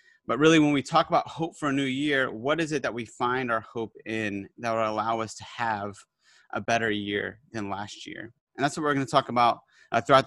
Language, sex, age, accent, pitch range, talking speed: English, male, 30-49, American, 115-145 Hz, 240 wpm